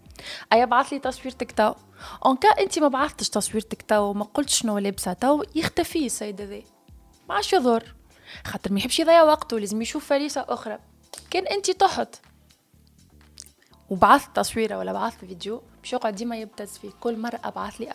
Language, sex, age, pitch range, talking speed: Arabic, female, 20-39, 215-290 Hz, 155 wpm